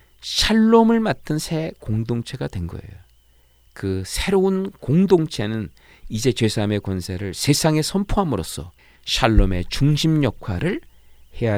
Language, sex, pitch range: Korean, male, 90-130 Hz